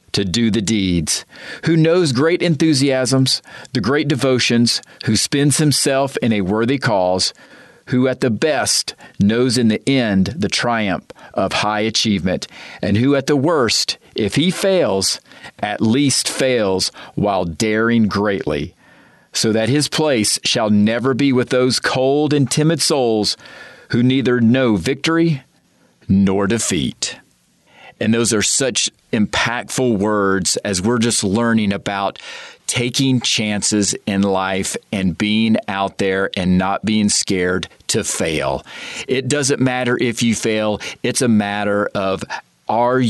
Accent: American